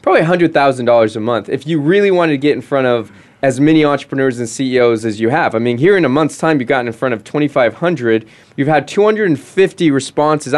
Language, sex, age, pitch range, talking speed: English, male, 20-39, 130-170 Hz, 215 wpm